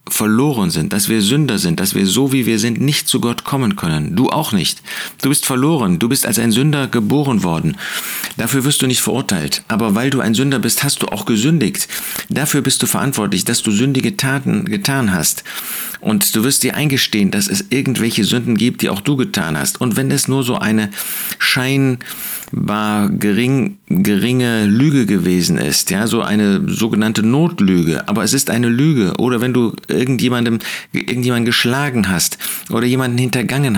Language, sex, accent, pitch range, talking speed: German, male, German, 115-140 Hz, 180 wpm